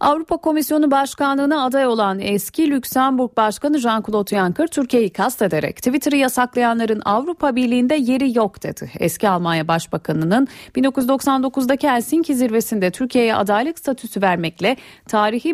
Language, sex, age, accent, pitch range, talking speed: Turkish, female, 40-59, native, 200-270 Hz, 120 wpm